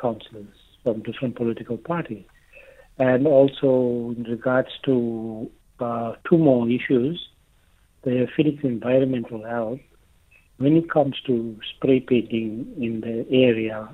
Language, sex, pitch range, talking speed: English, male, 115-130 Hz, 110 wpm